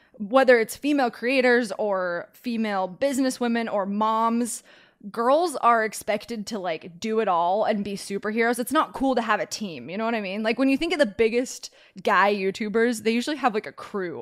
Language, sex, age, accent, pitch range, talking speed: English, female, 20-39, American, 200-255 Hz, 200 wpm